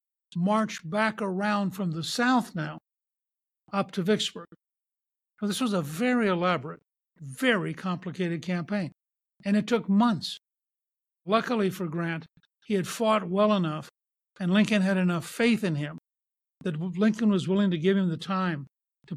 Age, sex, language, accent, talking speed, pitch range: 60-79, male, English, American, 145 wpm, 170-205 Hz